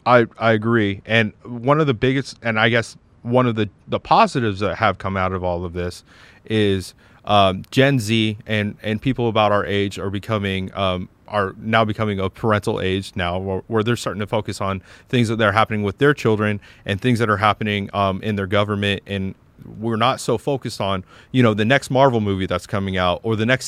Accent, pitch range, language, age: American, 100-120 Hz, English, 30-49